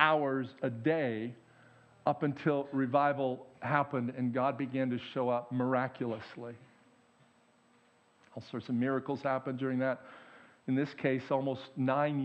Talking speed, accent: 125 wpm, American